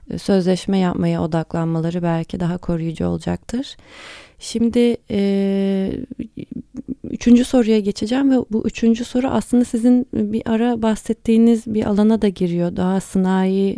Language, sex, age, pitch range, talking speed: Turkish, female, 30-49, 180-225 Hz, 120 wpm